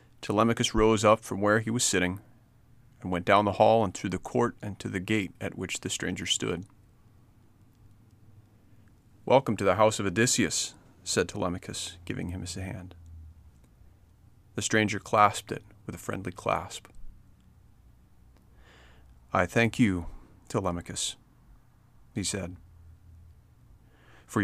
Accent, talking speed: American, 130 wpm